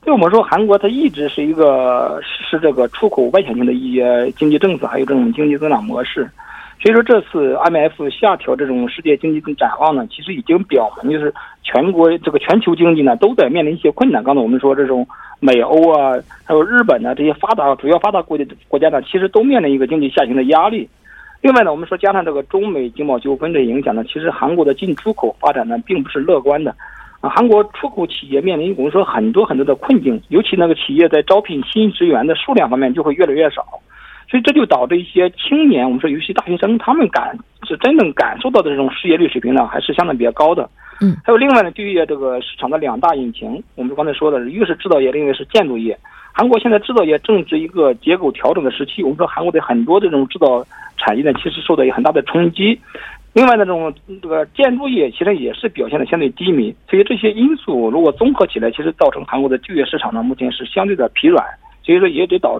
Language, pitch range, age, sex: Korean, 145-230 Hz, 50-69, male